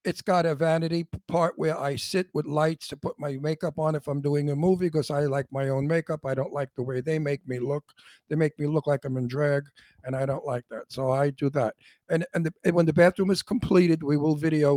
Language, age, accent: English, 60-79, American